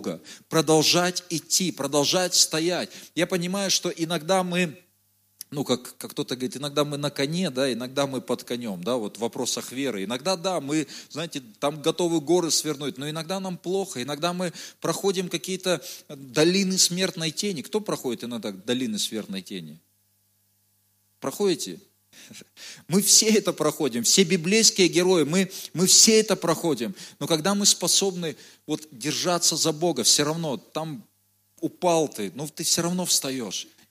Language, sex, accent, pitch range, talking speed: Russian, male, native, 130-185 Hz, 145 wpm